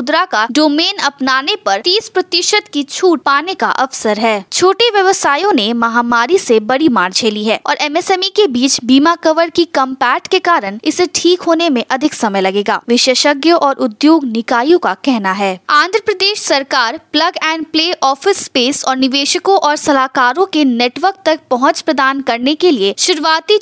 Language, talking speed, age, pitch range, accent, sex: Hindi, 170 wpm, 20-39, 250-340 Hz, native, female